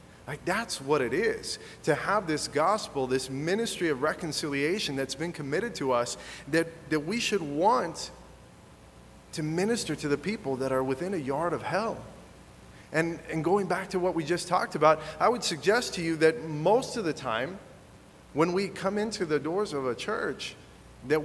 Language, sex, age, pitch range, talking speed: English, male, 30-49, 145-185 Hz, 185 wpm